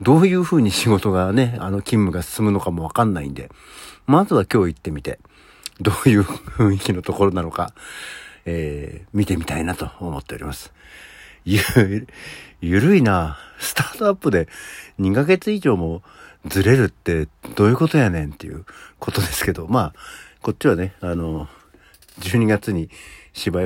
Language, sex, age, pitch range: Japanese, male, 60-79, 80-110 Hz